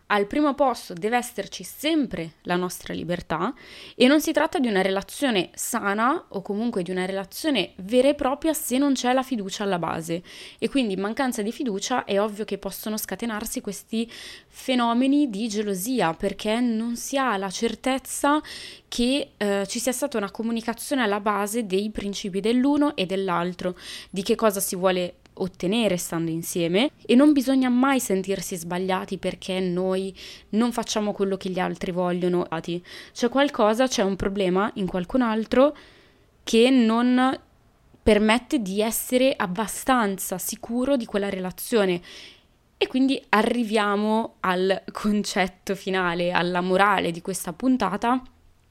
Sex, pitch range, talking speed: female, 190-250 Hz, 145 wpm